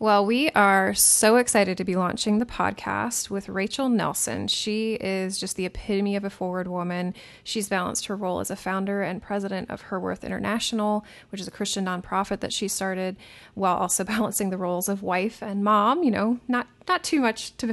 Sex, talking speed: female, 200 wpm